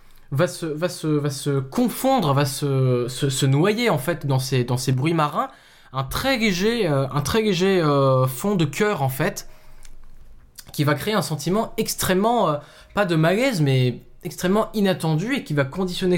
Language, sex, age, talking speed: French, male, 20-39, 185 wpm